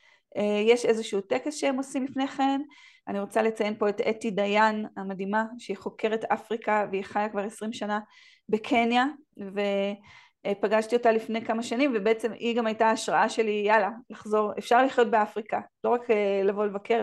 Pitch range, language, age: 210-250 Hz, Hebrew, 30-49